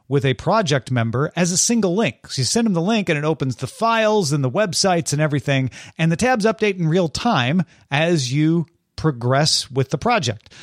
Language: English